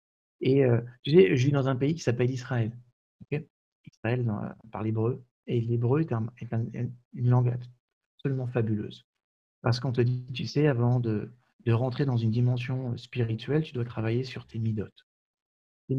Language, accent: French, French